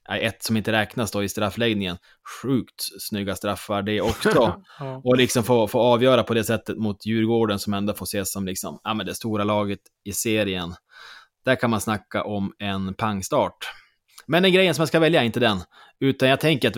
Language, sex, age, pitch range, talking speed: Swedish, male, 20-39, 100-125 Hz, 195 wpm